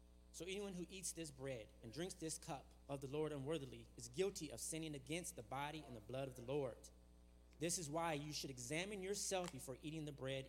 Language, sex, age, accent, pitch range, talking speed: English, male, 30-49, American, 110-155 Hz, 215 wpm